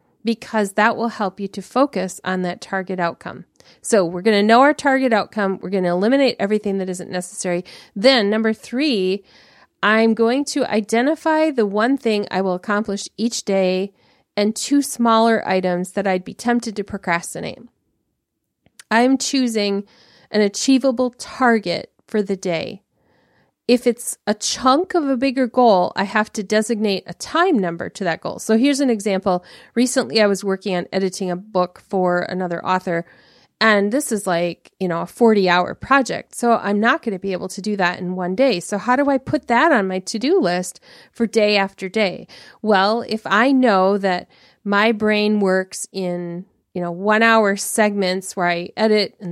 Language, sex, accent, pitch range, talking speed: English, female, American, 185-230 Hz, 180 wpm